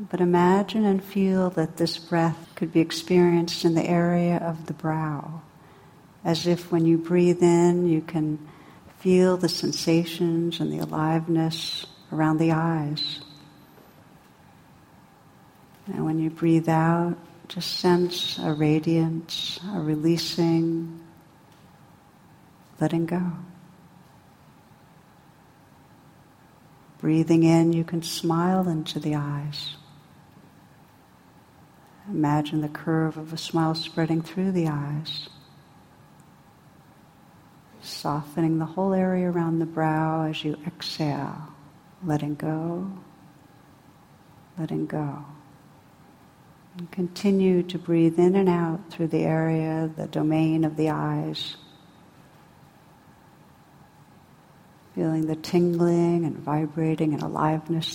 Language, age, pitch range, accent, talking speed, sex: English, 60-79, 155-175 Hz, American, 105 wpm, female